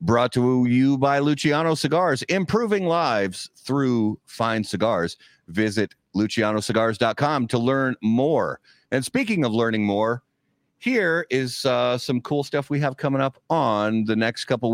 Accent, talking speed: American, 140 wpm